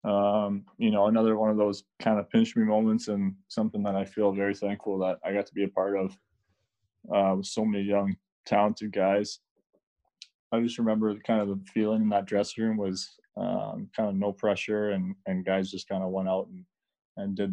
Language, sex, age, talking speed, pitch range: English, male, 20-39, 210 wpm, 95-110 Hz